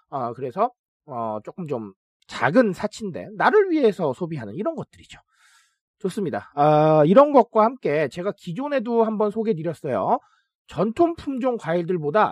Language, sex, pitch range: Korean, male, 185-265 Hz